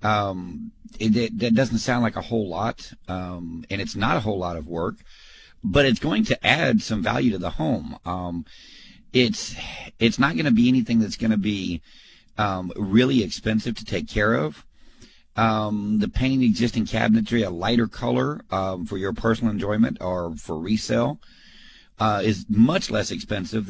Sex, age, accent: male, 50-69, American